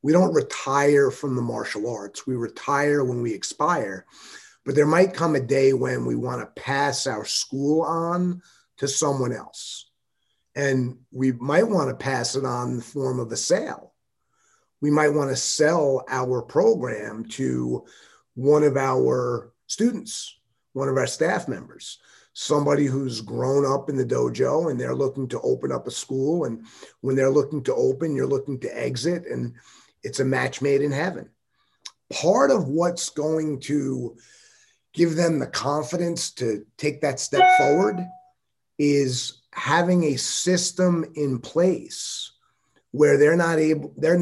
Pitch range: 130-160 Hz